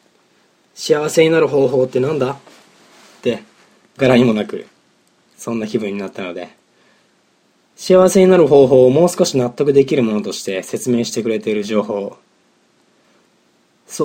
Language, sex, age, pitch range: Japanese, male, 20-39, 115-160 Hz